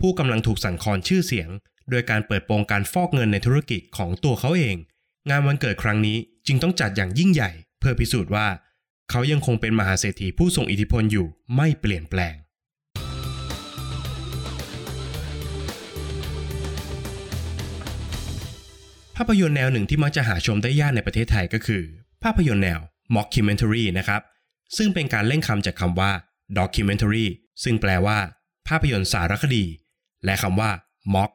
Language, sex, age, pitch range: Thai, male, 20-39, 95-125 Hz